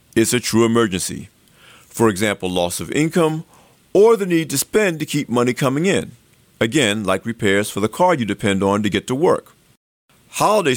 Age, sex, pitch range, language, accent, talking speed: 50-69, male, 110-160 Hz, English, American, 185 wpm